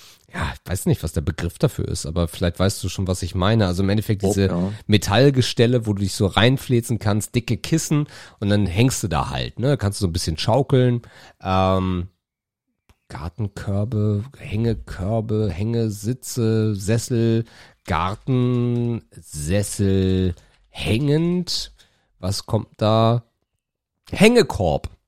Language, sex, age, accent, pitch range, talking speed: German, male, 40-59, German, 95-115 Hz, 130 wpm